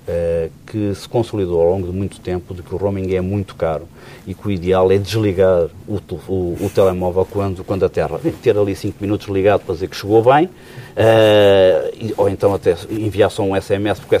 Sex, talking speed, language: male, 205 wpm, Portuguese